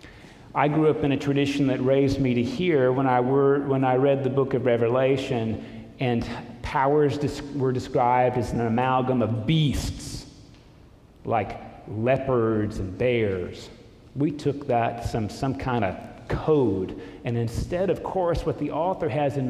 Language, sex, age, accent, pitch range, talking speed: English, male, 40-59, American, 110-140 Hz, 150 wpm